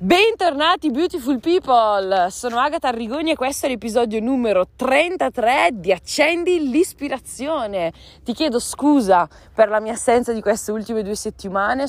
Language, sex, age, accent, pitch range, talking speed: Italian, female, 20-39, native, 180-250 Hz, 135 wpm